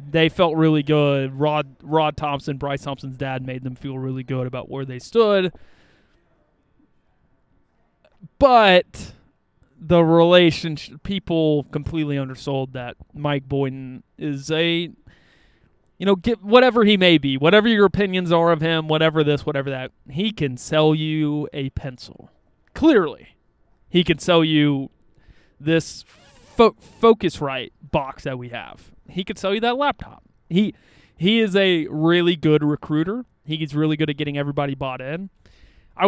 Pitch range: 135-170 Hz